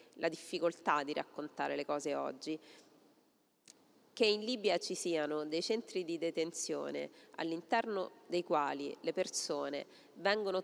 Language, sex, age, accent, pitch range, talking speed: Italian, female, 30-49, native, 155-210 Hz, 125 wpm